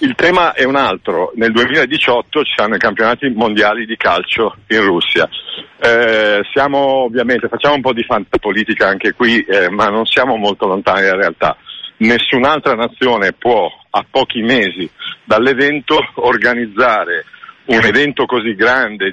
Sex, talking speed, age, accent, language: male, 145 wpm, 50-69, native, Italian